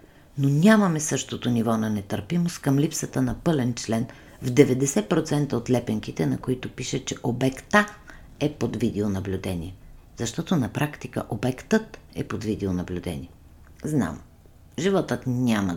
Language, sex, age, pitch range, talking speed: Bulgarian, female, 50-69, 100-145 Hz, 125 wpm